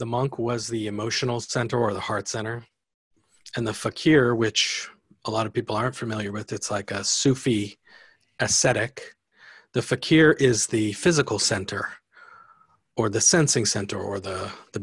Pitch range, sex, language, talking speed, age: 105-125 Hz, male, English, 160 wpm, 40-59